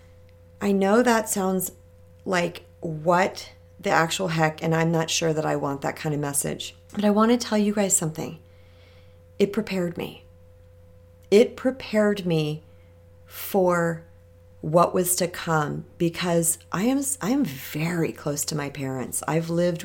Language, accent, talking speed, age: English, American, 155 wpm, 40-59